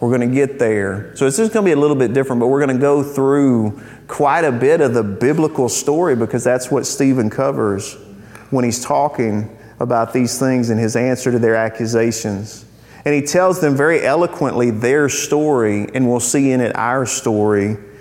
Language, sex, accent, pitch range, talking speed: English, male, American, 115-145 Hz, 200 wpm